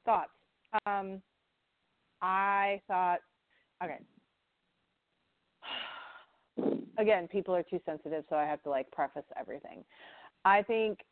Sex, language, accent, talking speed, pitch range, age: female, English, American, 105 wpm, 160-195 Hz, 40-59